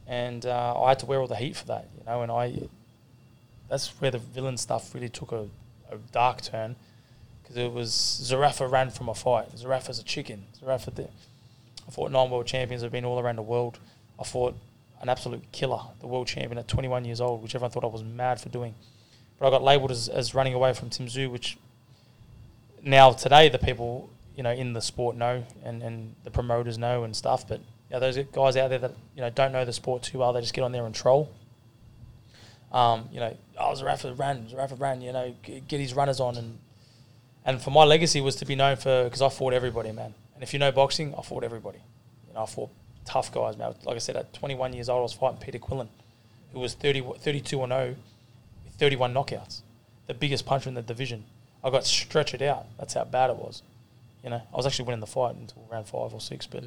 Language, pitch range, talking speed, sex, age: English, 115-130 Hz, 230 wpm, male, 20-39